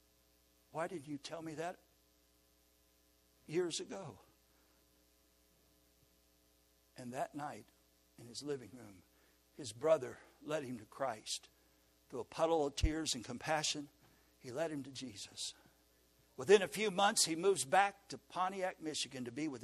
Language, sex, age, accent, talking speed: English, male, 60-79, American, 140 wpm